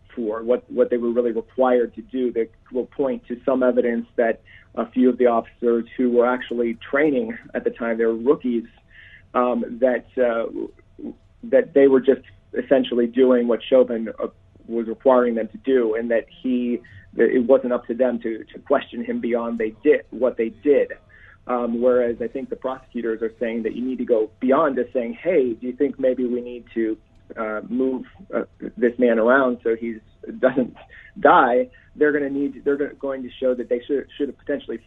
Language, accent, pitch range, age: English, American, 115-130 Hz, 30-49